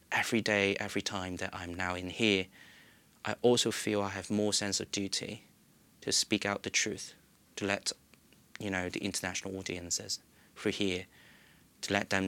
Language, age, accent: English, 30-49, British